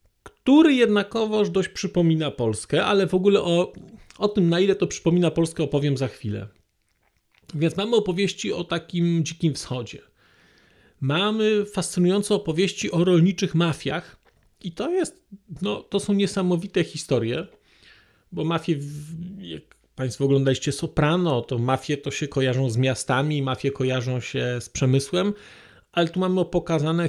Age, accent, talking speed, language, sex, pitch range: 40-59, native, 135 wpm, Polish, male, 140-185 Hz